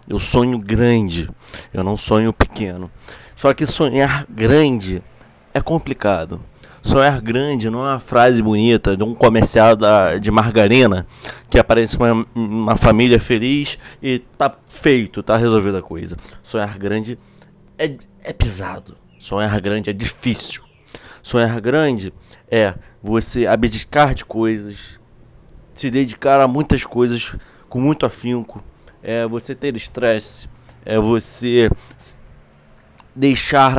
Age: 20-39